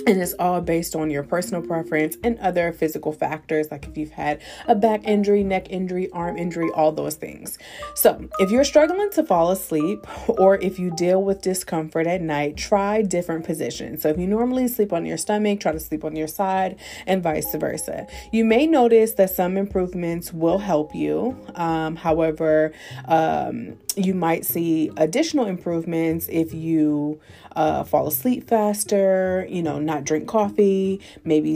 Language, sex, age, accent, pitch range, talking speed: English, female, 30-49, American, 160-200 Hz, 170 wpm